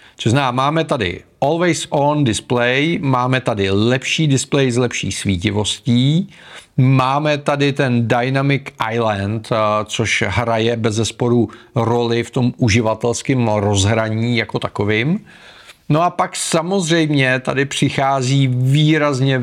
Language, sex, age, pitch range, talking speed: Czech, male, 40-59, 115-150 Hz, 105 wpm